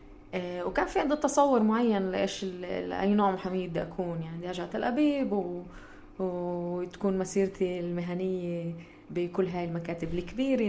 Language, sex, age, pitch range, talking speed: Arabic, female, 20-39, 170-205 Hz, 120 wpm